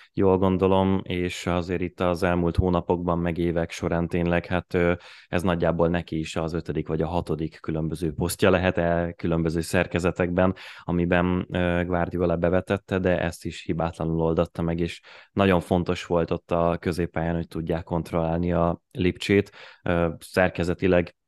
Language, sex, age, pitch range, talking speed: Hungarian, male, 20-39, 85-95 Hz, 140 wpm